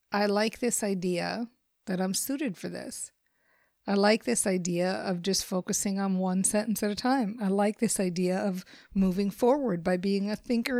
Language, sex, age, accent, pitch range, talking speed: English, female, 50-69, American, 205-255 Hz, 185 wpm